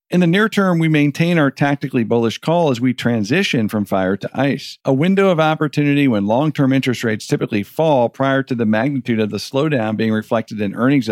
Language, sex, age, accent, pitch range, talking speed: English, male, 50-69, American, 110-145 Hz, 205 wpm